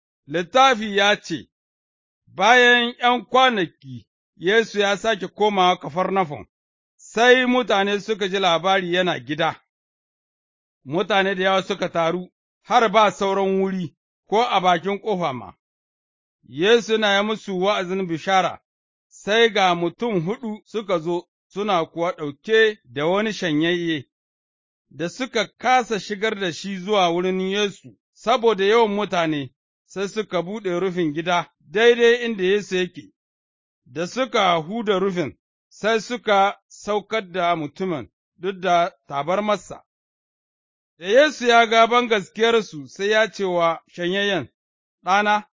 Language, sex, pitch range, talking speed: English, male, 170-220 Hz, 110 wpm